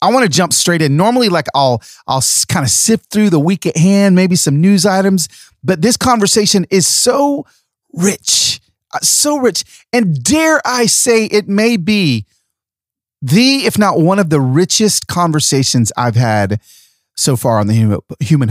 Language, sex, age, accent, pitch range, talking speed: English, male, 30-49, American, 135-205 Hz, 170 wpm